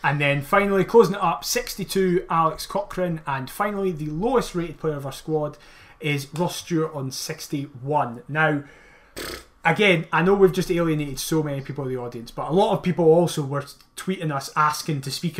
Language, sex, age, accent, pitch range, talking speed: English, male, 30-49, British, 140-185 Hz, 185 wpm